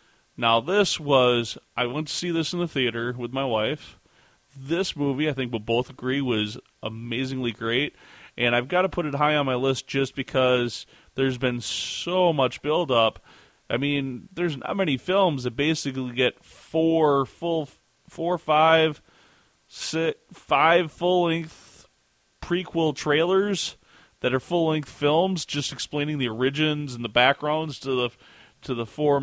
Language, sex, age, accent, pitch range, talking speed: English, male, 30-49, American, 120-145 Hz, 155 wpm